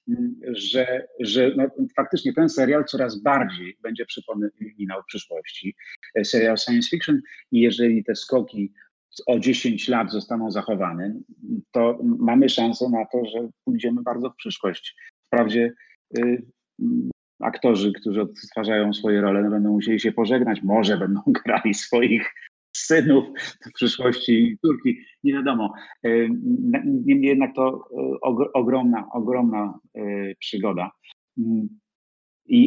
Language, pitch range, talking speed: Polish, 110-160 Hz, 105 wpm